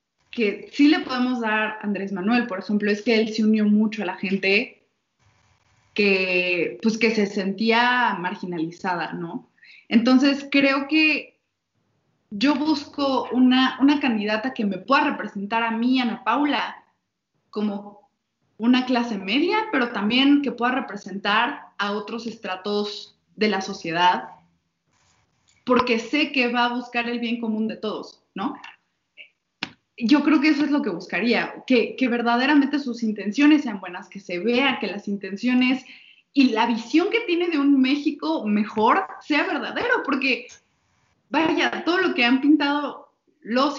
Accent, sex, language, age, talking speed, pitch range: Mexican, female, Spanish, 20-39, 150 wpm, 210-265 Hz